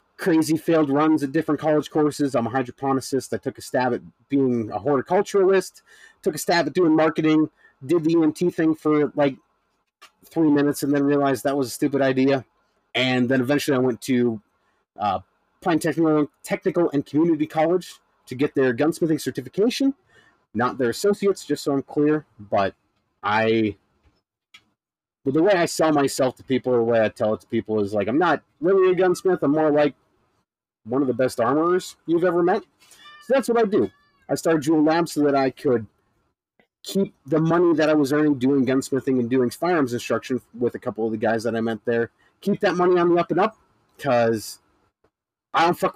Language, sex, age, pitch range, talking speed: English, male, 30-49, 125-170 Hz, 190 wpm